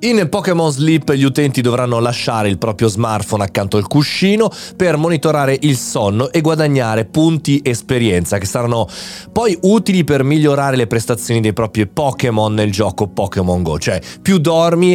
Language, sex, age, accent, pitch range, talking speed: Italian, male, 30-49, native, 110-150 Hz, 155 wpm